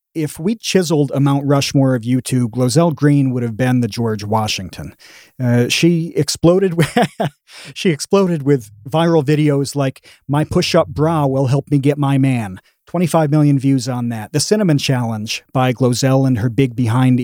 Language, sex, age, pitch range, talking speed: English, male, 30-49, 130-165 Hz, 180 wpm